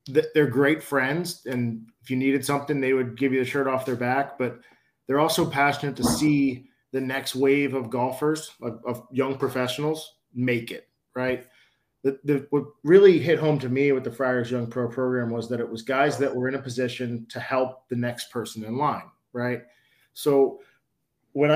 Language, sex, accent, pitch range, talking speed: English, male, American, 125-140 Hz, 185 wpm